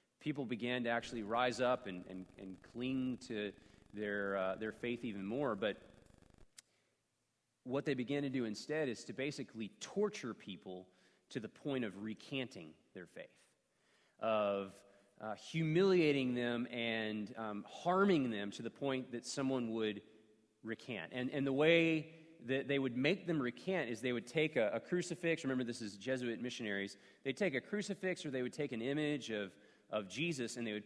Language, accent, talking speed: English, American, 175 wpm